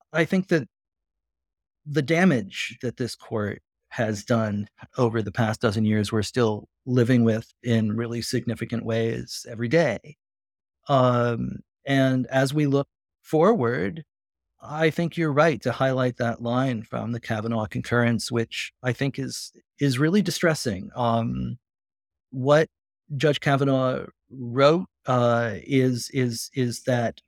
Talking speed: 130 wpm